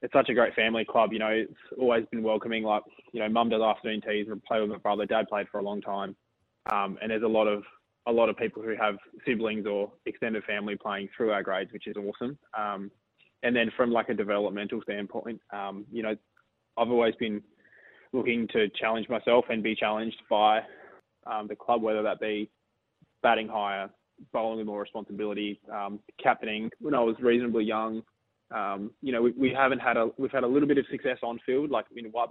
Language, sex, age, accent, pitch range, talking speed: English, male, 20-39, Australian, 105-115 Hz, 210 wpm